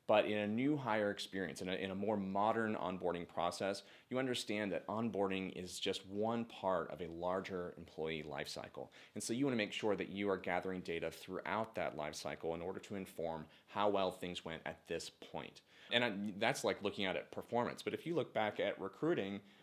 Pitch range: 90-115 Hz